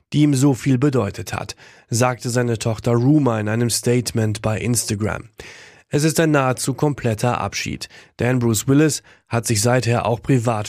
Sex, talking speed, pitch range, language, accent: male, 165 wpm, 110-135 Hz, German, German